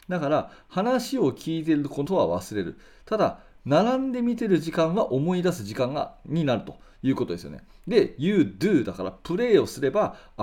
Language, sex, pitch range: Japanese, male, 120-195 Hz